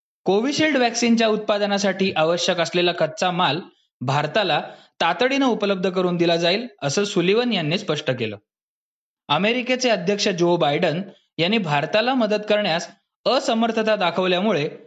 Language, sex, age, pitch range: Marathi, male, 20-39, 160-220 Hz